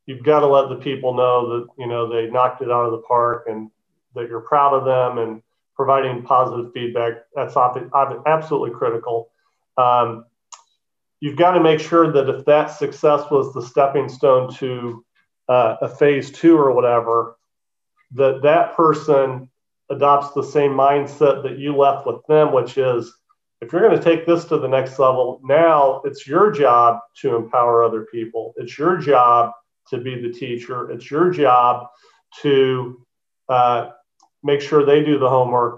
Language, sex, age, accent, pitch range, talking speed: English, male, 40-59, American, 120-145 Hz, 170 wpm